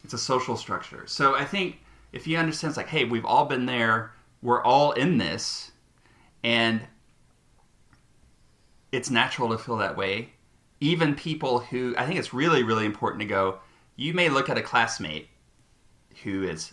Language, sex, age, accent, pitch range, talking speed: English, male, 30-49, American, 105-135 Hz, 170 wpm